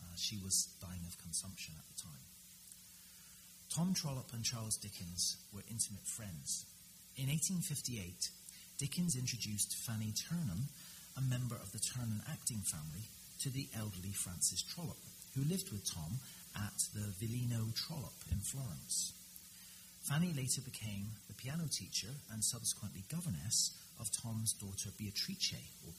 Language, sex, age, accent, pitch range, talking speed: English, male, 40-59, British, 100-145 Hz, 135 wpm